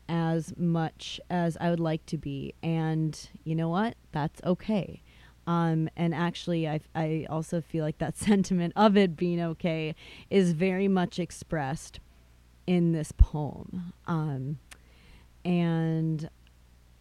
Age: 30-49